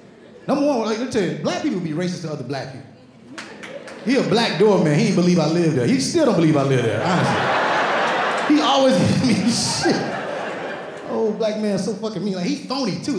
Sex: male